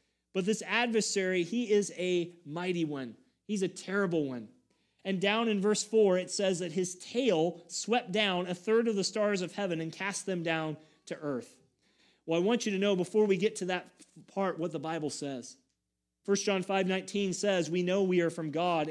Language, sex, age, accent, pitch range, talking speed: English, male, 30-49, American, 160-205 Hz, 200 wpm